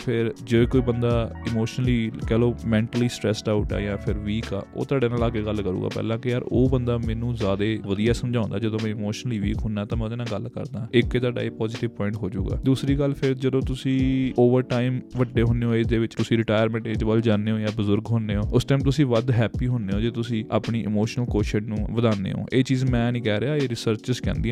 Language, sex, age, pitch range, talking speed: Punjabi, male, 20-39, 110-125 Hz, 220 wpm